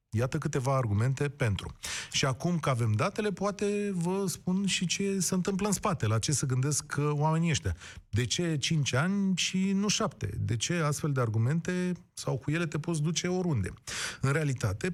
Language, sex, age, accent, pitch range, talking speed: Romanian, male, 30-49, native, 115-175 Hz, 180 wpm